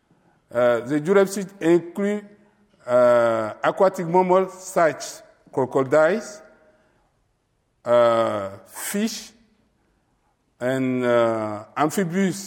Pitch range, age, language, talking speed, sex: 130-185 Hz, 50-69, English, 70 wpm, male